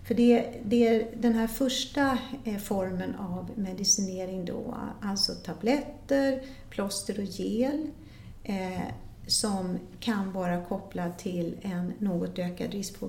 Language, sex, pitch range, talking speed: Swedish, female, 185-240 Hz, 120 wpm